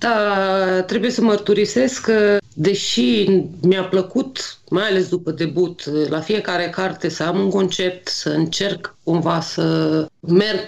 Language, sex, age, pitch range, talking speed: Romanian, female, 30-49, 170-210 Hz, 135 wpm